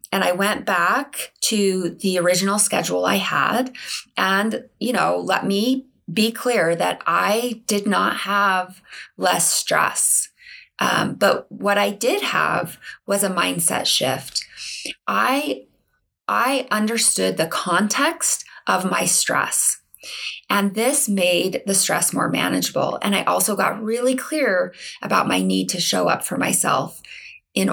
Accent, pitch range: American, 180-245 Hz